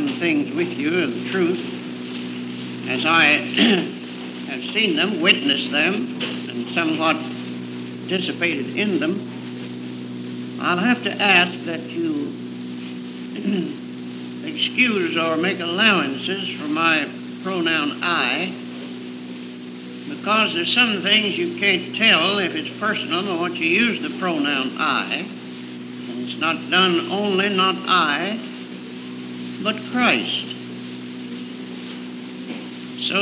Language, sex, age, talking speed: English, male, 60-79, 105 wpm